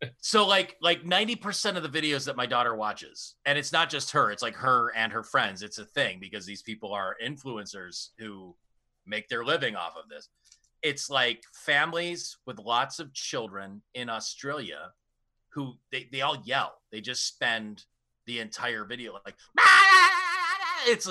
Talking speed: 170 wpm